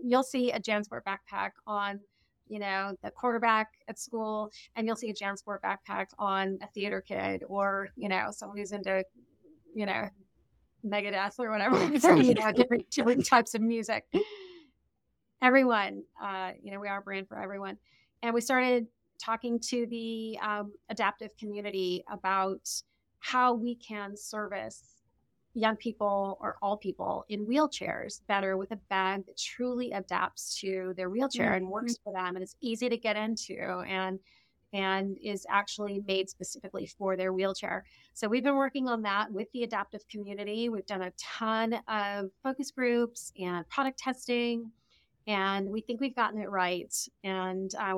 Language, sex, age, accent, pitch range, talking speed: English, female, 30-49, American, 195-240 Hz, 160 wpm